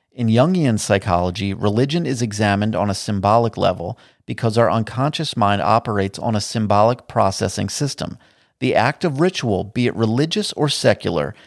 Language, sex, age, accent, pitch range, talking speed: English, male, 40-59, American, 105-130 Hz, 150 wpm